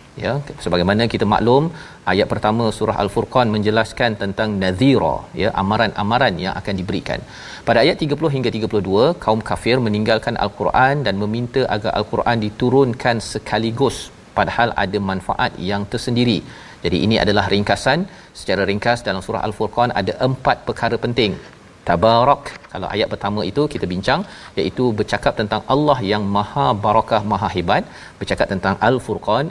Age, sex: 40-59, male